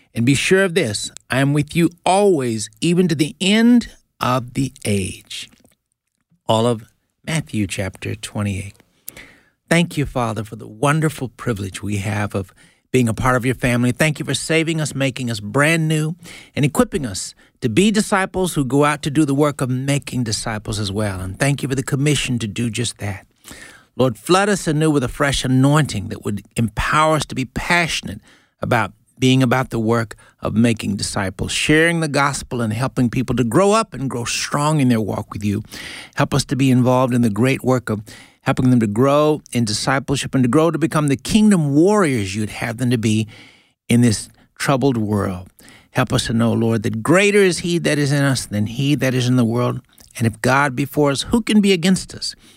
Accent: American